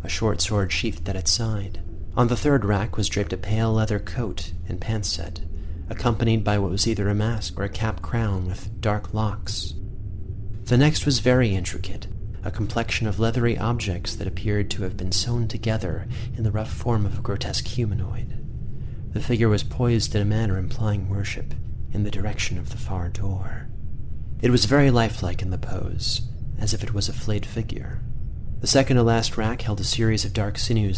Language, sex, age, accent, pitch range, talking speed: English, male, 30-49, American, 95-110 Hz, 190 wpm